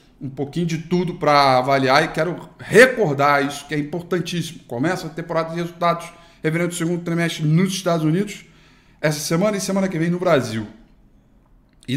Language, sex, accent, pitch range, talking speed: Portuguese, male, Brazilian, 140-190 Hz, 170 wpm